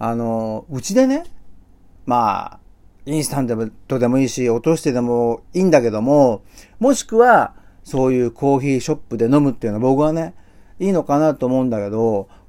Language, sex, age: Japanese, male, 40-59